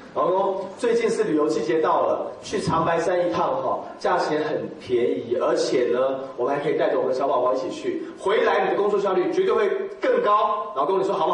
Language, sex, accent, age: Chinese, male, native, 30-49